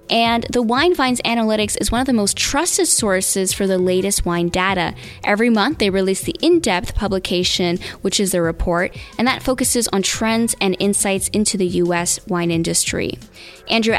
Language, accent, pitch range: English, American, 180-220 Hz